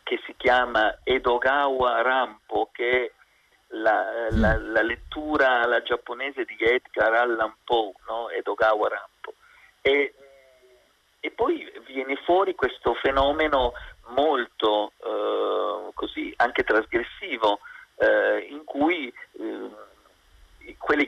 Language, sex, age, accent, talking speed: Italian, male, 40-59, native, 105 wpm